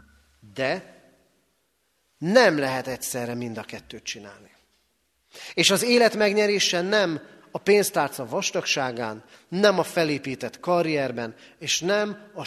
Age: 40-59